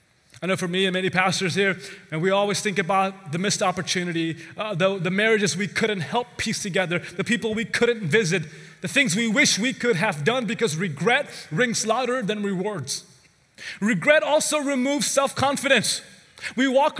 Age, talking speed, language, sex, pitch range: 30-49, 180 wpm, English, male, 180-270 Hz